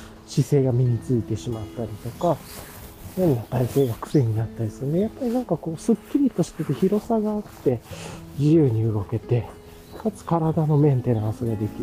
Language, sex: Japanese, male